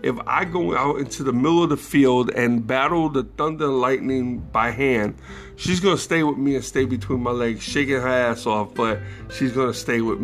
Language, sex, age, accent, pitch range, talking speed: English, male, 50-69, American, 115-150 Hz, 230 wpm